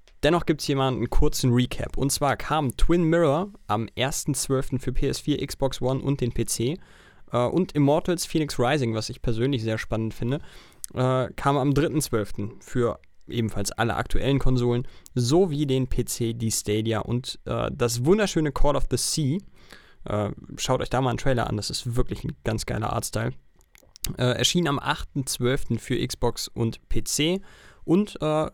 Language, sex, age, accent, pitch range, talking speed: German, male, 20-39, German, 120-145 Hz, 165 wpm